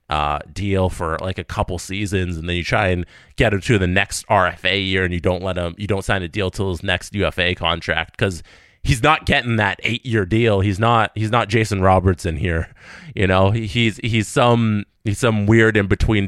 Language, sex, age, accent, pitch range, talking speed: English, male, 30-49, American, 95-125 Hz, 215 wpm